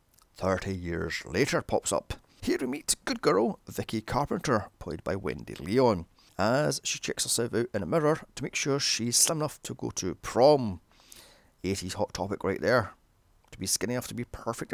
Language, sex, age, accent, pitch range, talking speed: English, male, 30-49, British, 90-125 Hz, 185 wpm